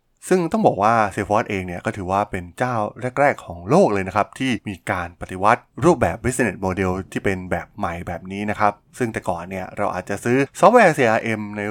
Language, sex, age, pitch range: Thai, male, 20-39, 95-120 Hz